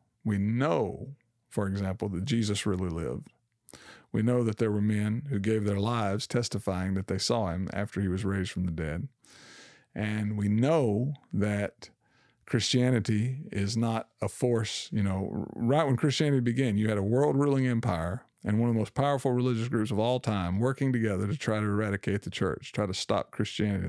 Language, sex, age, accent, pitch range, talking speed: English, male, 50-69, American, 100-120 Hz, 185 wpm